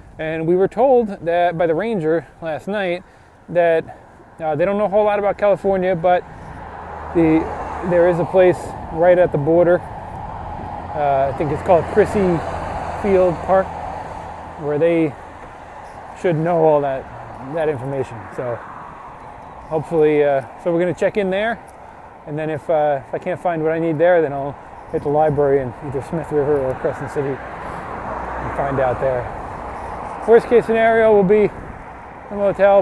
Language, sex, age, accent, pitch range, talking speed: English, male, 20-39, American, 150-185 Hz, 165 wpm